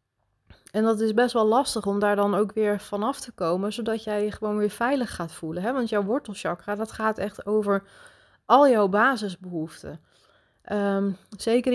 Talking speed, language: 170 wpm, Dutch